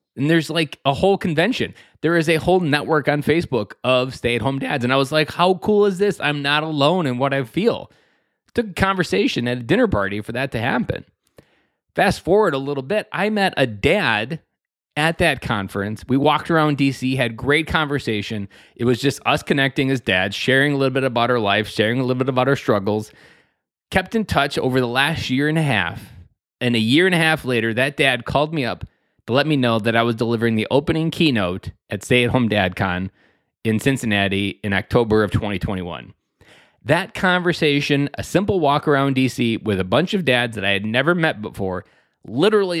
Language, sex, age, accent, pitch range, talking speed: English, male, 20-39, American, 110-150 Hz, 205 wpm